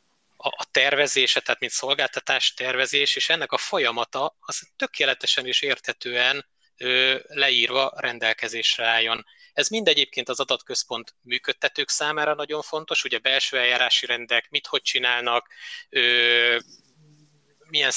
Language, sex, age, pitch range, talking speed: Hungarian, male, 20-39, 120-155 Hz, 115 wpm